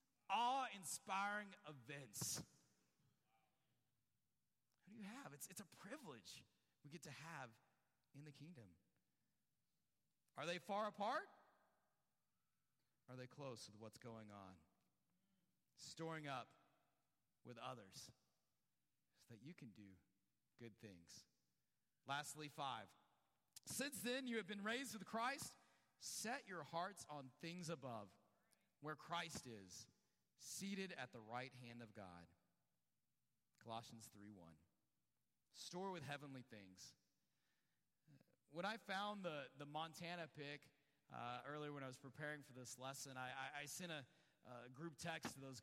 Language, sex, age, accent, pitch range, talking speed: English, male, 40-59, American, 125-175 Hz, 130 wpm